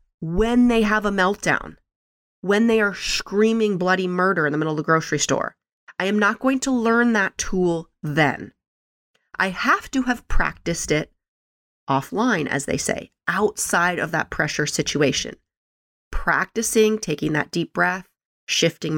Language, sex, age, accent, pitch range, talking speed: English, female, 30-49, American, 155-210 Hz, 150 wpm